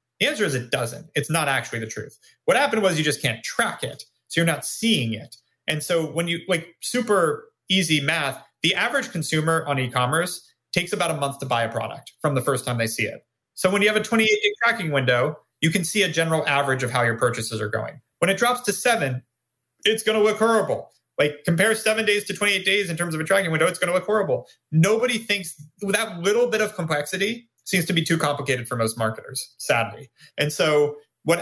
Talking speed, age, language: 225 wpm, 30-49, English